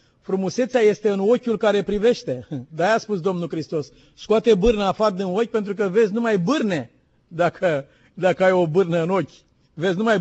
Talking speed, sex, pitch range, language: 175 wpm, male, 200-290 Hz, Romanian